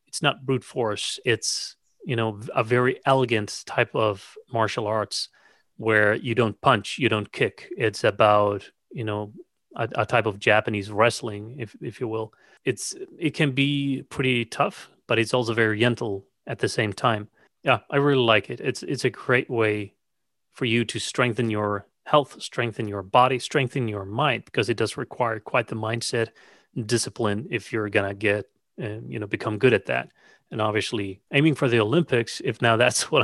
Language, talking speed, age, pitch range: English, 185 wpm, 30-49, 105-125 Hz